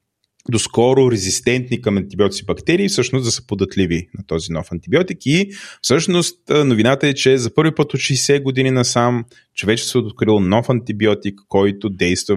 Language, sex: Bulgarian, male